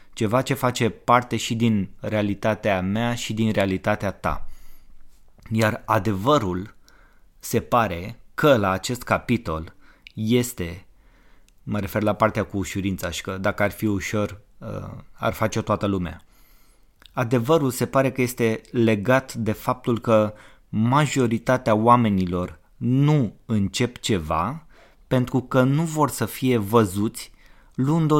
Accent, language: native, Romanian